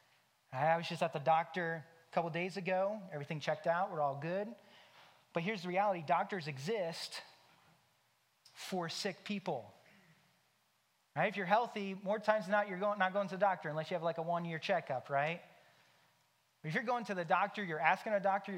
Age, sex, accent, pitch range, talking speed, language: 30-49, male, American, 170-225 Hz, 185 wpm, English